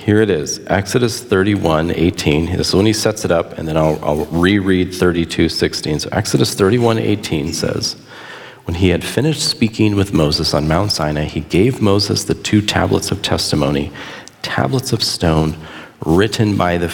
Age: 40-59